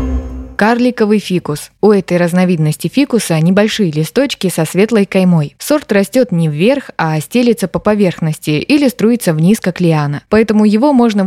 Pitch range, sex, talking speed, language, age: 165-220 Hz, female, 145 wpm, Russian, 20-39